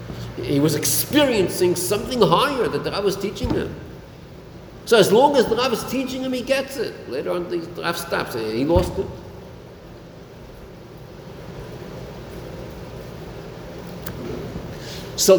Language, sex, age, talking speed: English, male, 50-69, 130 wpm